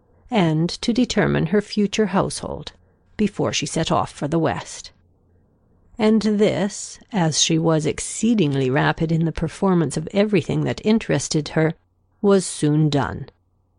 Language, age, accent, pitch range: Korean, 50-69, American, 145-205 Hz